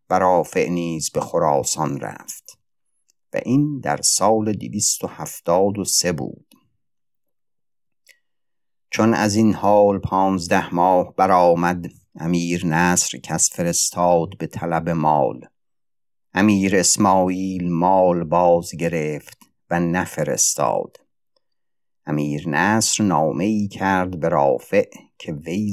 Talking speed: 100 wpm